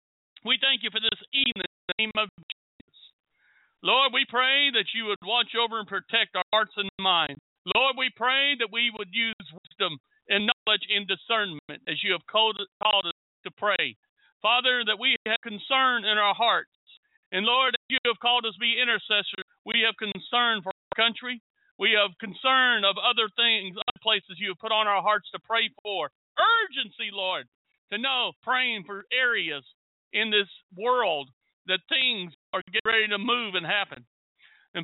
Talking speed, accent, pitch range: 180 wpm, American, 200-245 Hz